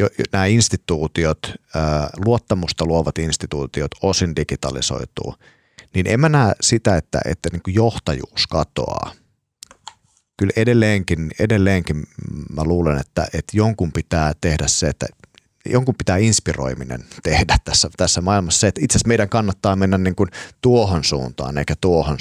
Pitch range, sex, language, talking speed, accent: 75-100 Hz, male, Finnish, 130 wpm, native